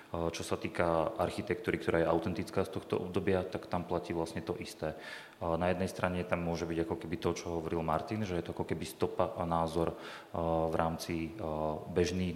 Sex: male